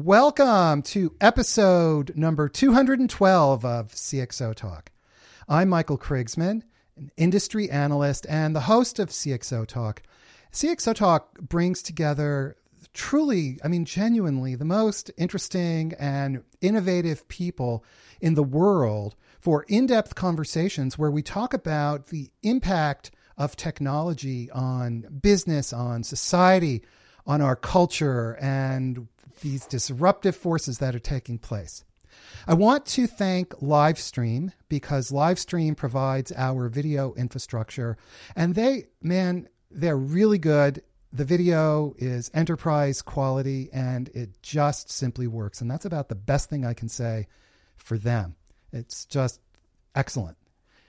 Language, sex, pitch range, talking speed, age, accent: English, male, 125-180 Hz, 125 wpm, 40-59, American